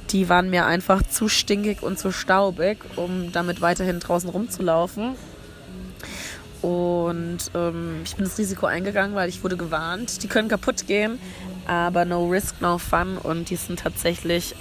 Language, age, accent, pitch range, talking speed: German, 20-39, German, 170-215 Hz, 155 wpm